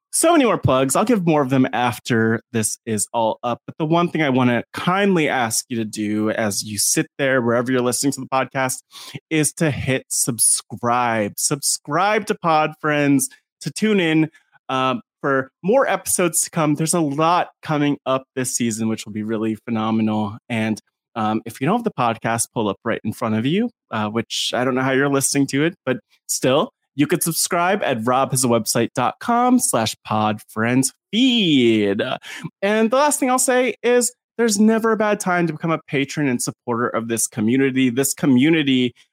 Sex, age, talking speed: male, 30-49, 190 wpm